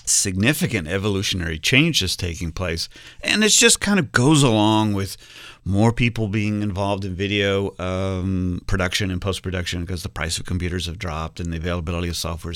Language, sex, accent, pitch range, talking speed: English, male, American, 90-110 Hz, 170 wpm